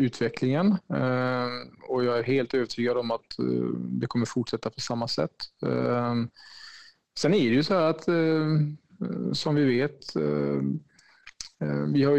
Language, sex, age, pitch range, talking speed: Swedish, male, 20-39, 120-135 Hz, 130 wpm